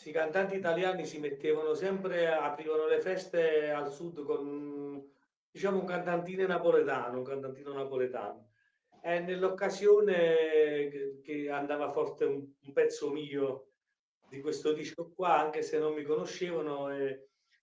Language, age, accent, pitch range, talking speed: Italian, 40-59, native, 130-200 Hz, 125 wpm